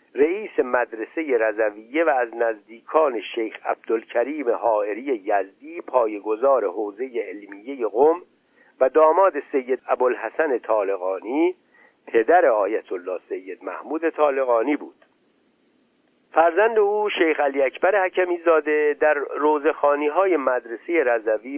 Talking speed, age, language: 105 wpm, 60-79, Persian